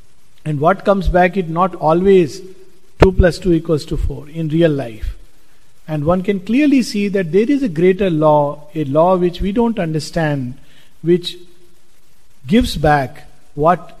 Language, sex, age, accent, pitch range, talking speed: English, male, 50-69, Indian, 150-185 Hz, 160 wpm